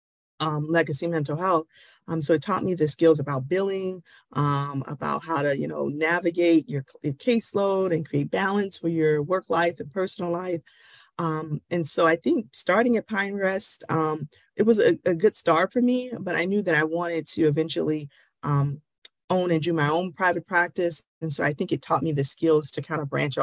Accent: American